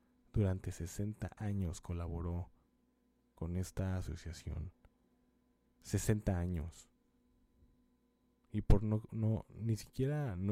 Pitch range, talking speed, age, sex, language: 85-105 Hz, 90 wpm, 20-39, male, Spanish